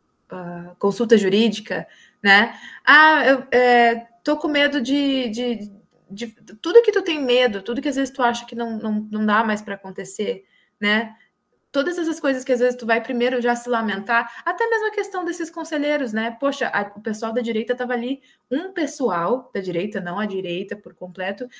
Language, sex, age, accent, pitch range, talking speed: Portuguese, female, 20-39, Brazilian, 215-280 Hz, 185 wpm